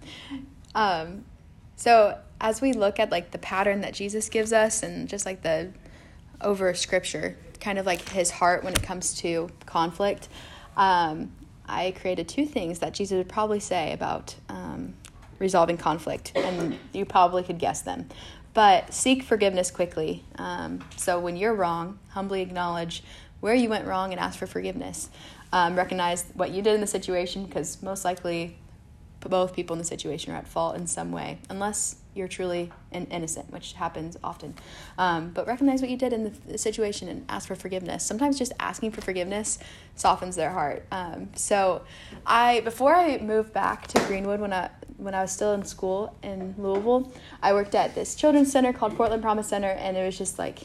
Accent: American